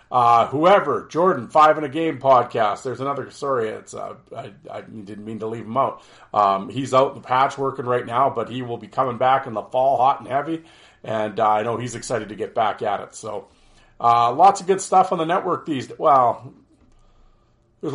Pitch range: 115-135 Hz